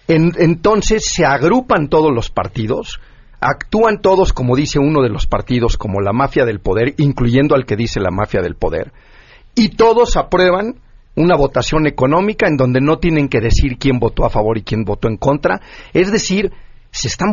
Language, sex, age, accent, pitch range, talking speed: Spanish, male, 40-59, Mexican, 115-170 Hz, 180 wpm